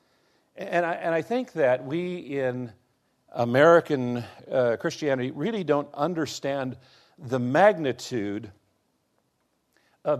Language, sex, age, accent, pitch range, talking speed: English, male, 50-69, American, 130-175 Hz, 95 wpm